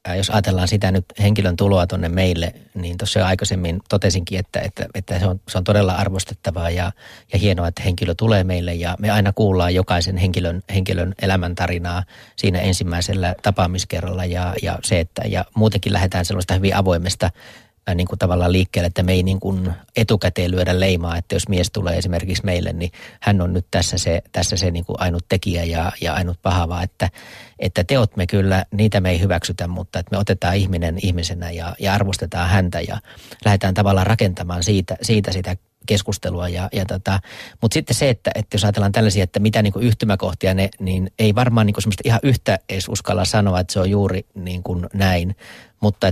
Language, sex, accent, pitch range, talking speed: Finnish, male, native, 90-105 Hz, 175 wpm